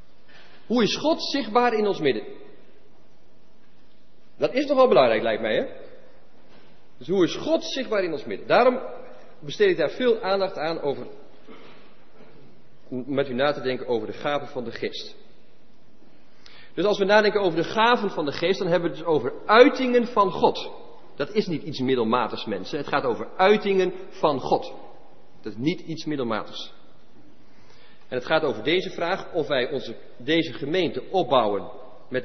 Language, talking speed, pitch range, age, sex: English, 165 wpm, 135-220 Hz, 40-59, male